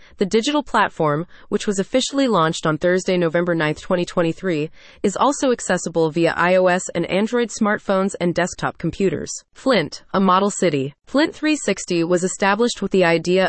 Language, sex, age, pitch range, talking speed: English, female, 30-49, 170-220 Hz, 150 wpm